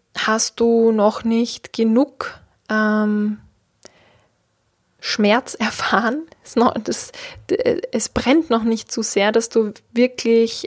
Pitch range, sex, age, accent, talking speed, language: 200-240 Hz, female, 20-39, German, 125 wpm, German